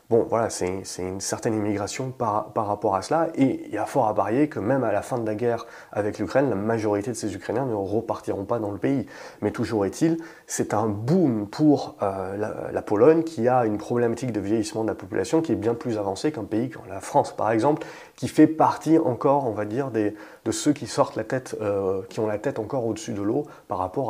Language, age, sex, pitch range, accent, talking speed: French, 30-49, male, 105-135 Hz, French, 240 wpm